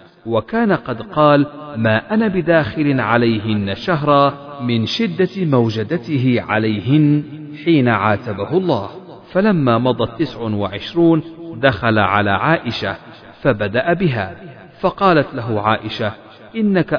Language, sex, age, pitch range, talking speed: Arabic, male, 40-59, 110-160 Hz, 100 wpm